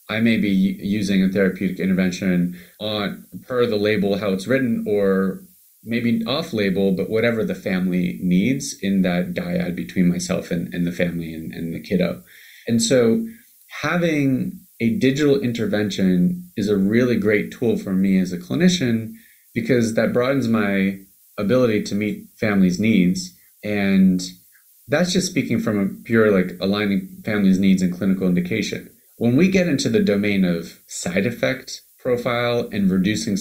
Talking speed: 155 wpm